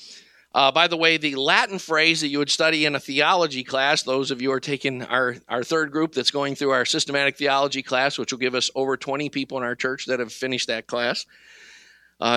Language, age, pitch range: English, 50-69, 130-165 Hz